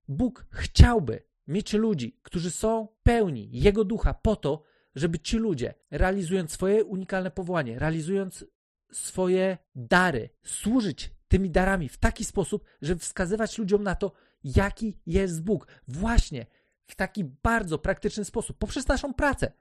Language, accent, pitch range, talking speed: Polish, native, 170-220 Hz, 135 wpm